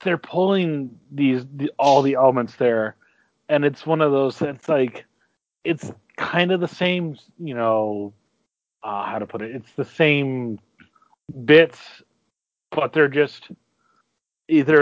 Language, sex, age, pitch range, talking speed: English, male, 30-49, 115-150 Hz, 140 wpm